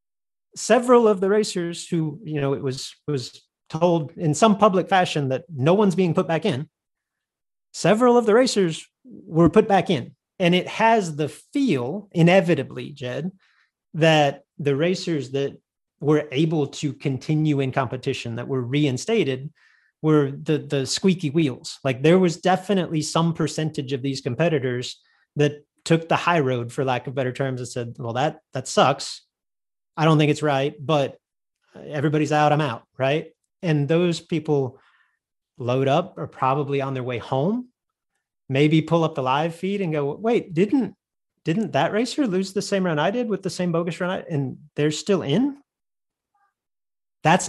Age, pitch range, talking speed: 30-49, 140-185 Hz, 170 wpm